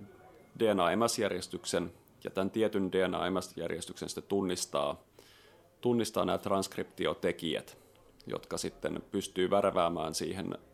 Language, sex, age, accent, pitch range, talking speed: Finnish, male, 30-49, native, 90-100 Hz, 80 wpm